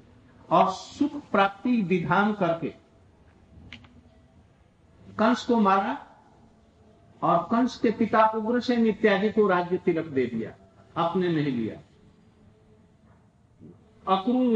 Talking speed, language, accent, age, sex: 95 wpm, Hindi, native, 60-79, male